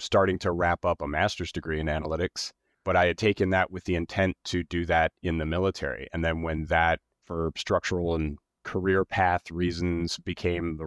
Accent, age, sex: American, 30-49, male